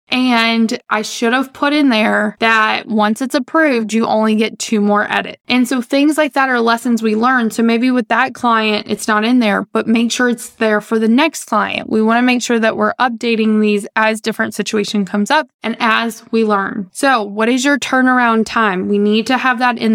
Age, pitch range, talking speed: 20-39, 215-250 Hz, 225 wpm